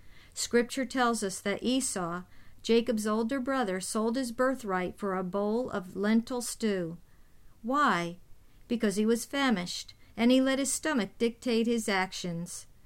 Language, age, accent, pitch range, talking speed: English, 50-69, American, 190-235 Hz, 140 wpm